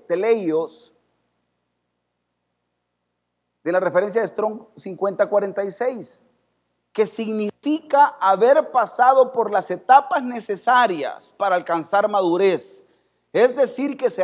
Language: Spanish